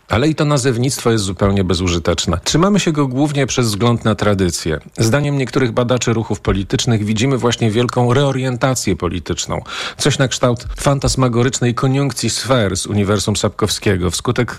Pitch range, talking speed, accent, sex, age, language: 105-140 Hz, 145 wpm, native, male, 40-59, Polish